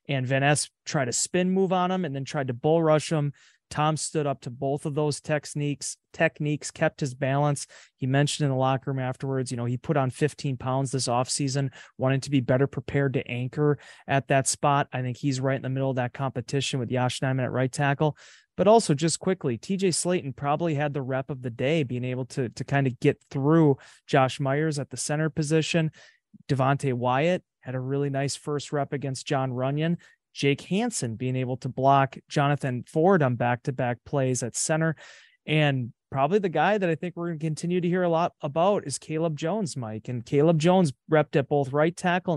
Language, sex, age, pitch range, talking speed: English, male, 30-49, 130-160 Hz, 210 wpm